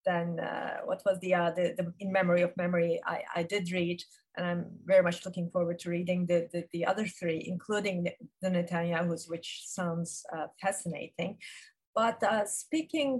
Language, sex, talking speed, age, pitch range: Turkish, female, 175 wpm, 30-49, 175-245 Hz